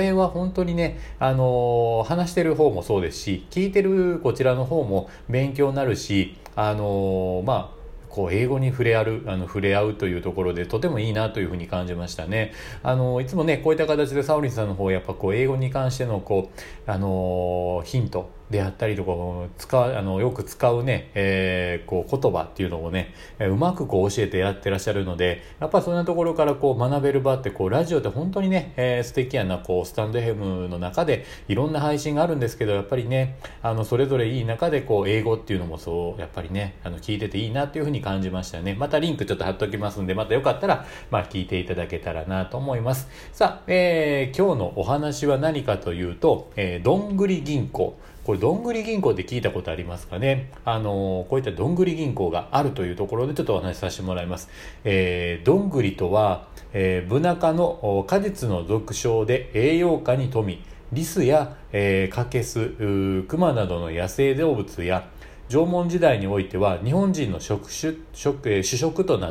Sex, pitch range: male, 95-140 Hz